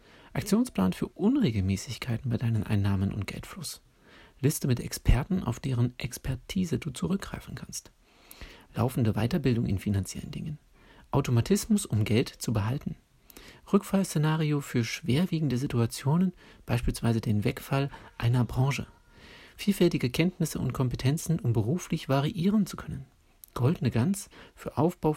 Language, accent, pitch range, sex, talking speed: German, German, 120-180 Hz, male, 115 wpm